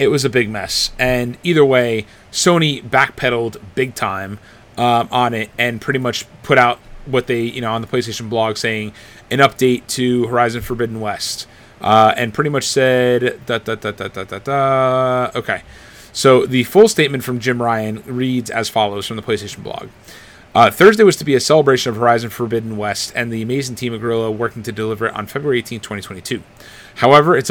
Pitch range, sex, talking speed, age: 110-130 Hz, male, 180 wpm, 30-49